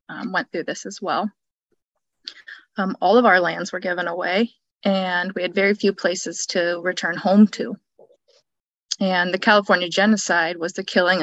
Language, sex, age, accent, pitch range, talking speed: English, female, 20-39, American, 180-225 Hz, 165 wpm